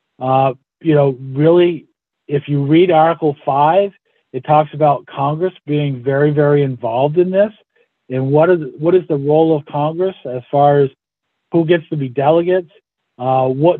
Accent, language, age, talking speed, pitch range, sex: American, English, 50-69, 165 wpm, 150-195 Hz, male